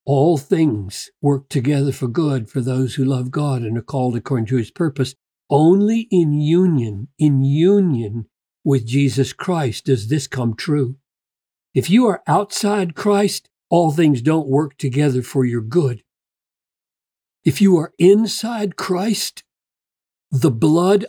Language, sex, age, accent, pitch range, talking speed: English, male, 50-69, American, 120-155 Hz, 140 wpm